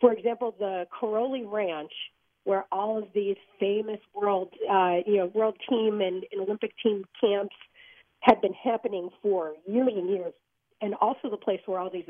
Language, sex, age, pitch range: English, female, 40-59, 190-245 Hz